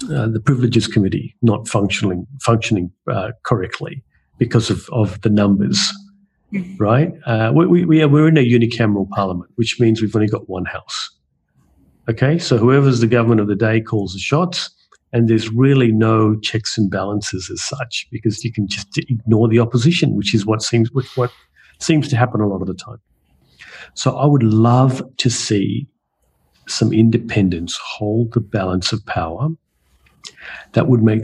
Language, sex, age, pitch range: English, male, 50-69, 105-130 Hz